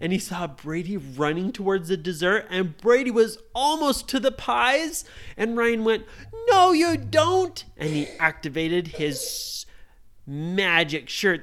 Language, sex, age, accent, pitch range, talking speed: English, male, 30-49, American, 175-265 Hz, 140 wpm